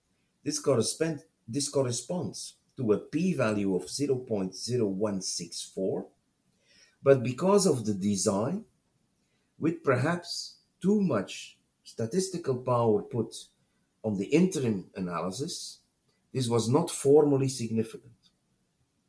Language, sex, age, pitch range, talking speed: English, male, 50-69, 105-150 Hz, 95 wpm